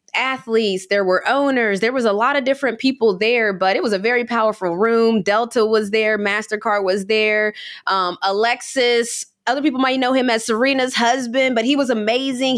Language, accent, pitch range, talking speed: English, American, 190-250 Hz, 185 wpm